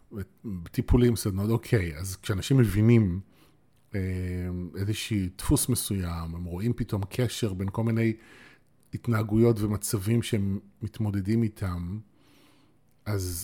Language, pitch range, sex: Hebrew, 100-130 Hz, male